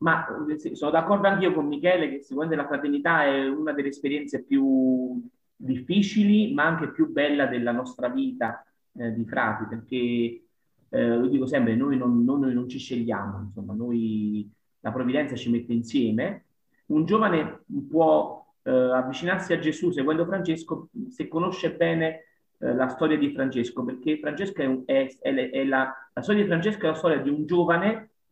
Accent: native